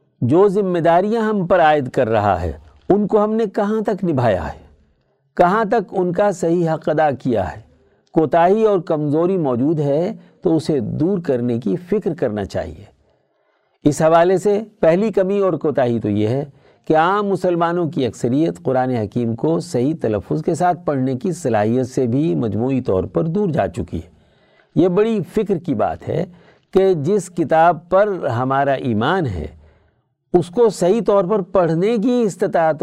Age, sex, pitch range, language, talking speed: 60-79, male, 130-195 Hz, Urdu, 170 wpm